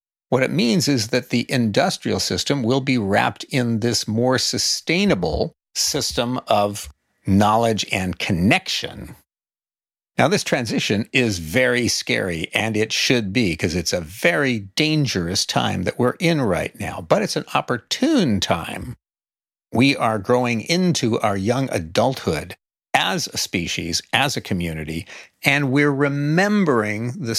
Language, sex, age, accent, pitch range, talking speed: English, male, 50-69, American, 100-135 Hz, 140 wpm